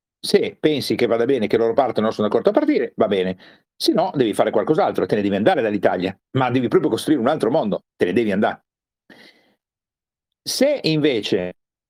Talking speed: 185 wpm